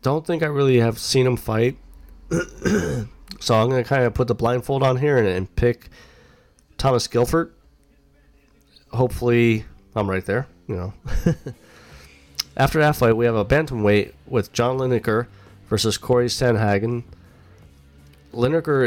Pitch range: 90-120 Hz